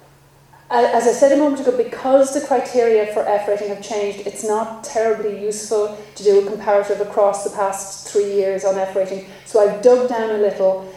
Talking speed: 195 wpm